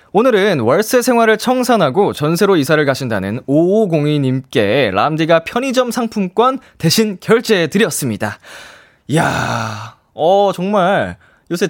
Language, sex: Korean, male